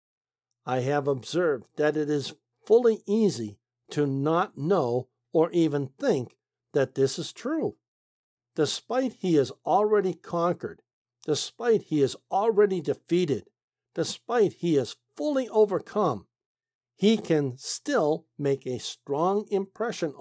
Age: 60-79